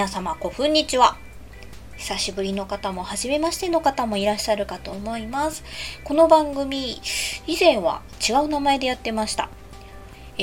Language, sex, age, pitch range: Japanese, female, 20-39, 195-290 Hz